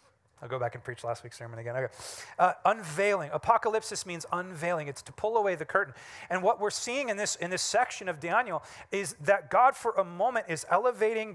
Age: 30-49